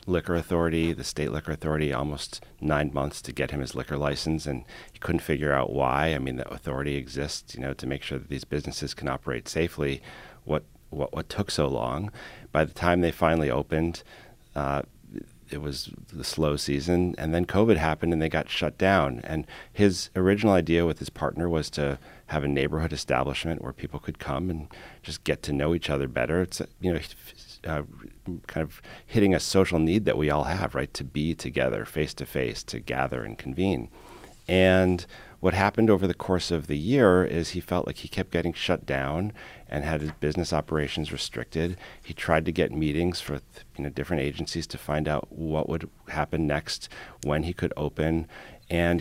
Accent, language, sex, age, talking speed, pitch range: American, English, male, 40-59, 195 wpm, 70-85 Hz